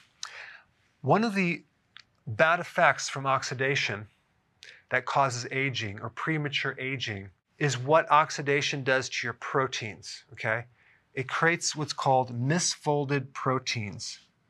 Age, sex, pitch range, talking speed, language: 40-59, male, 125-150 Hz, 110 wpm, English